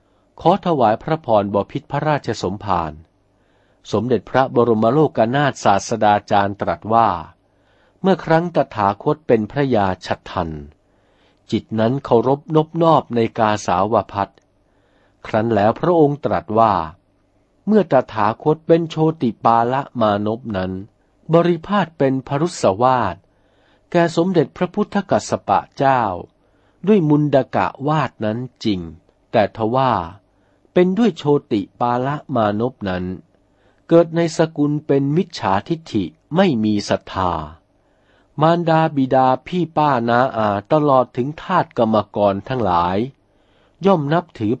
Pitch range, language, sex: 100-150 Hz, Thai, male